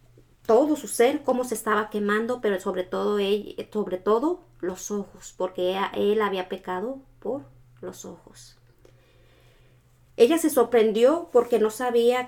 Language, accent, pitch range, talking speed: Spanish, Mexican, 185-235 Hz, 125 wpm